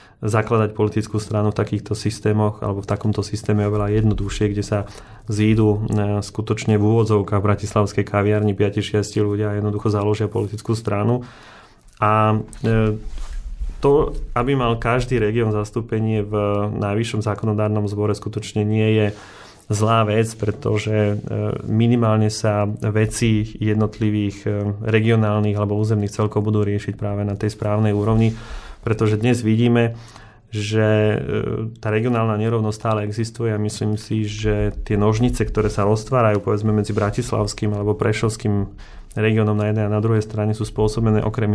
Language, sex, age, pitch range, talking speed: Slovak, male, 30-49, 105-110 Hz, 135 wpm